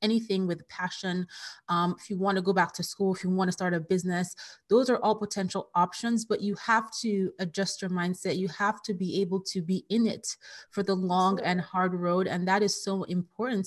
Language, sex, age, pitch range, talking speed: English, female, 30-49, 175-205 Hz, 215 wpm